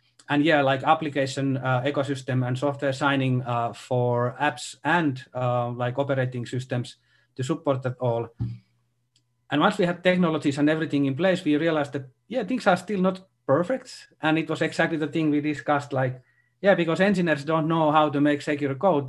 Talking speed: 180 wpm